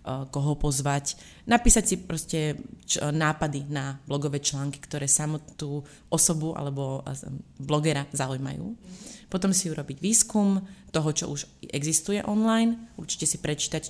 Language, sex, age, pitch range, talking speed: Slovak, female, 30-49, 145-170 Hz, 110 wpm